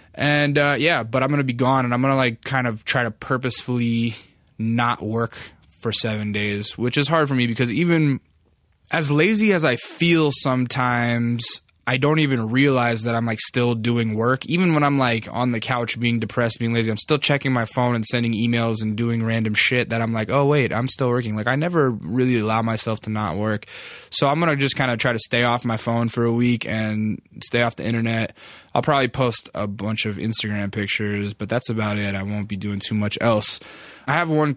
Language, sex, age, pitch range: English, male, 20-39, 110-130 Hz